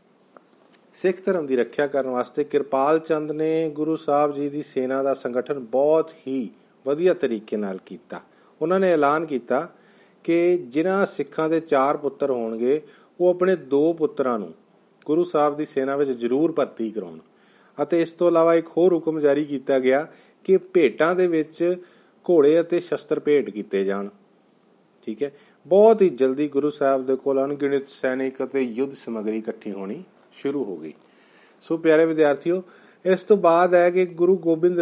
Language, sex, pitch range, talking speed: Punjabi, male, 130-170 Hz, 145 wpm